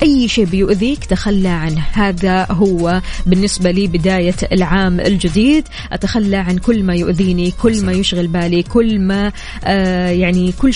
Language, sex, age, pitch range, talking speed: Arabic, female, 20-39, 180-220 Hz, 140 wpm